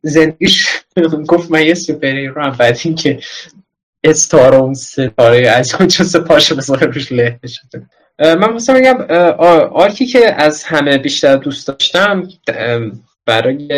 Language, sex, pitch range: Persian, male, 125-180 Hz